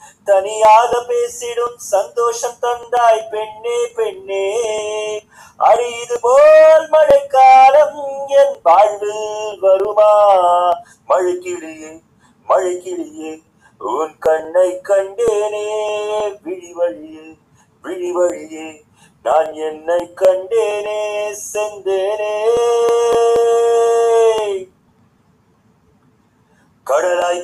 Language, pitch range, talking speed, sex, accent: Tamil, 170-215 Hz, 50 wpm, male, native